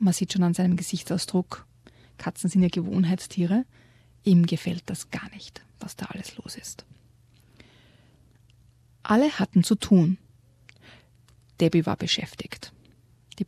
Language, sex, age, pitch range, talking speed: German, female, 30-49, 120-200 Hz, 125 wpm